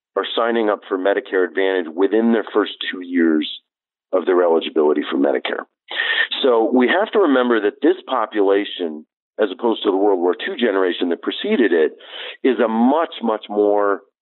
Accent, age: American, 40-59